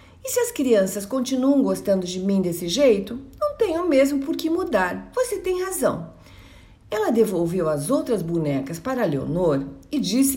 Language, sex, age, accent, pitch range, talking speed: Portuguese, female, 50-69, Brazilian, 195-305 Hz, 160 wpm